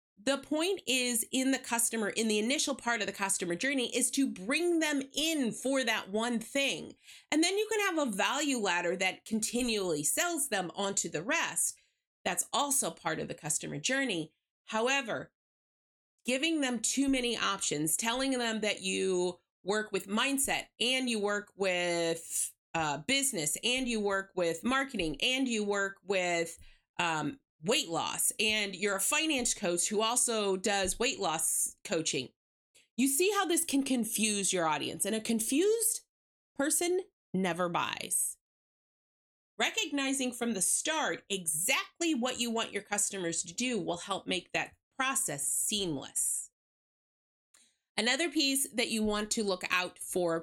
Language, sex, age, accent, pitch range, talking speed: English, female, 30-49, American, 195-270 Hz, 150 wpm